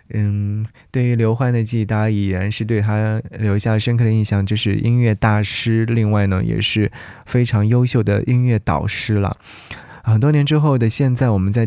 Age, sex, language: 20-39, male, Chinese